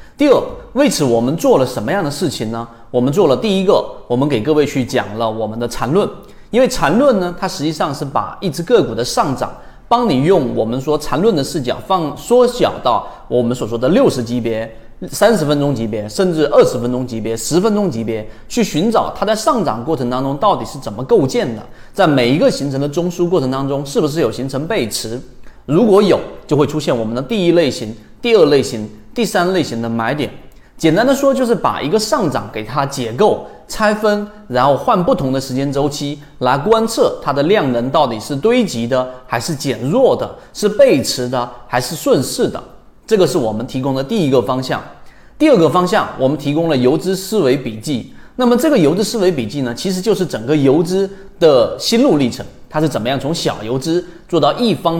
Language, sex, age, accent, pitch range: Chinese, male, 30-49, native, 125-190 Hz